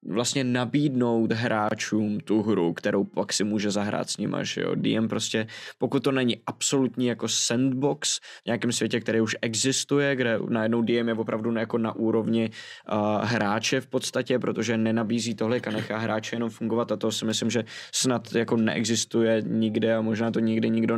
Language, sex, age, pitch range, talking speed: Czech, male, 20-39, 110-125 Hz, 175 wpm